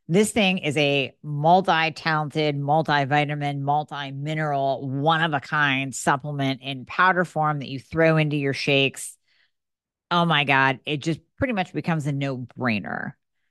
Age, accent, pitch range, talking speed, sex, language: 40-59, American, 150-190 Hz, 135 wpm, female, English